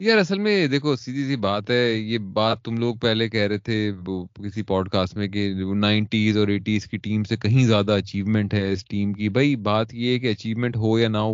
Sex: male